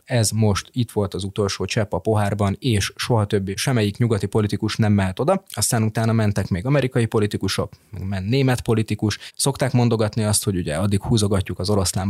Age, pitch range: 20-39, 100-120 Hz